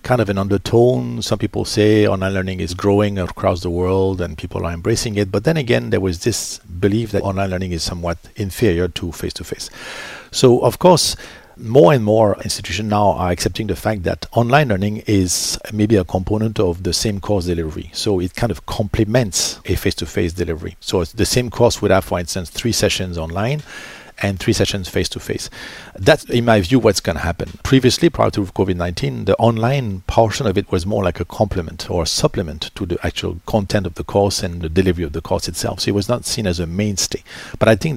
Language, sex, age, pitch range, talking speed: English, male, 50-69, 90-110 Hz, 215 wpm